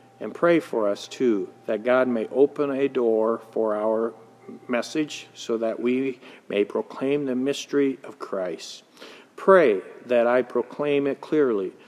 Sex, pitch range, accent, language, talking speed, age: male, 120-160 Hz, American, English, 145 wpm, 50-69